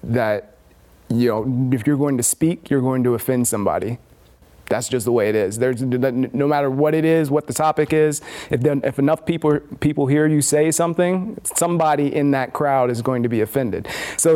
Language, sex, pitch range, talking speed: English, male, 125-150 Hz, 215 wpm